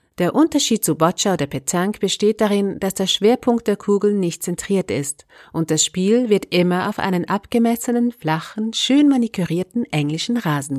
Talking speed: 160 wpm